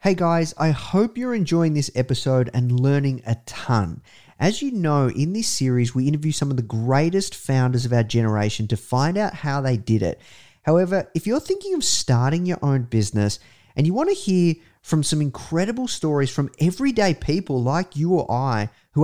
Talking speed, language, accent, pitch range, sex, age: 190 wpm, English, Australian, 115-160 Hz, male, 30-49